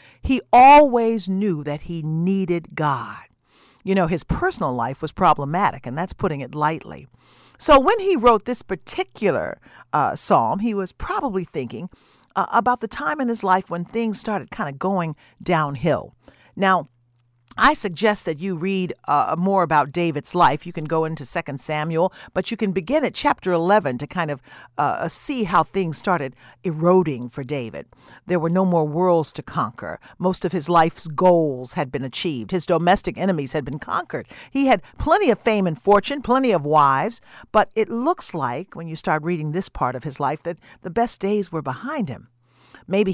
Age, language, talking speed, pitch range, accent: 50-69, English, 185 wpm, 150-215 Hz, American